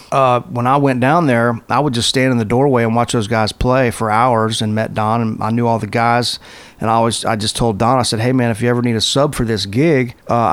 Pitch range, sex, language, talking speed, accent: 110-125 Hz, male, English, 285 wpm, American